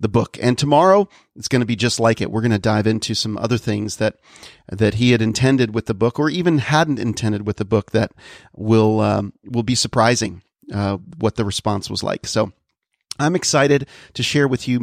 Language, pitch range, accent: English, 115-150 Hz, American